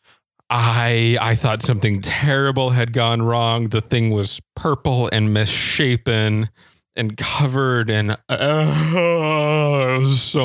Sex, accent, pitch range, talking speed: male, American, 110-130 Hz, 110 wpm